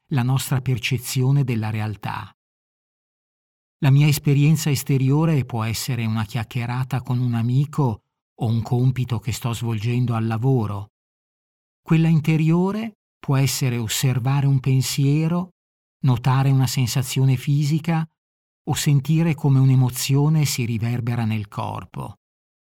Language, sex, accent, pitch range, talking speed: Italian, male, native, 115-140 Hz, 115 wpm